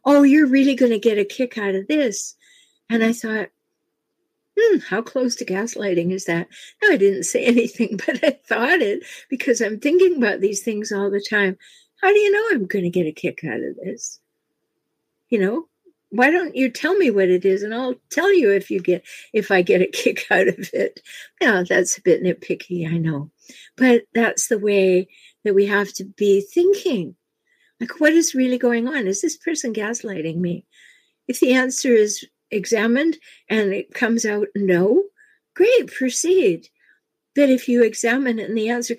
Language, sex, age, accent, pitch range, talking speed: English, female, 60-79, American, 200-295 Hz, 195 wpm